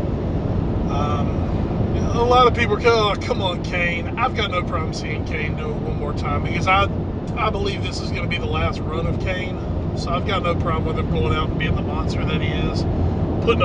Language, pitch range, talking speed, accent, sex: English, 85-105 Hz, 250 wpm, American, male